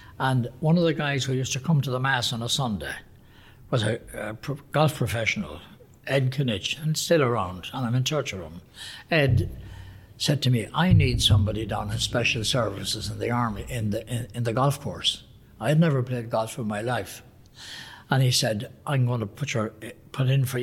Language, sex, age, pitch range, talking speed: English, male, 60-79, 110-130 Hz, 210 wpm